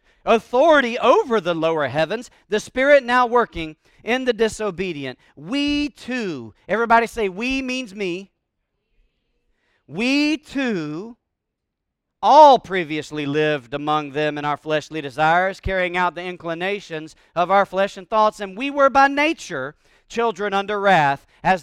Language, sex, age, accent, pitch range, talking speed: English, male, 40-59, American, 150-200 Hz, 135 wpm